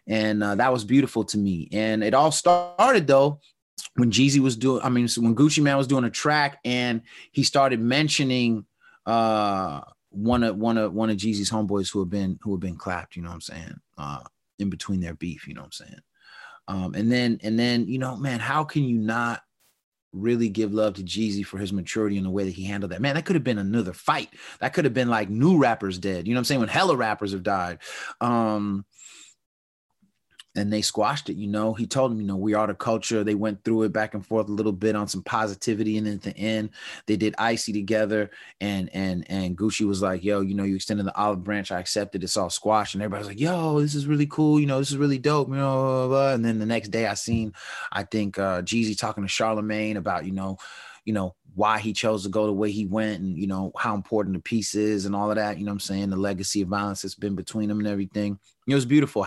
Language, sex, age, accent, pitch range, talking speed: English, male, 30-49, American, 100-120 Hz, 245 wpm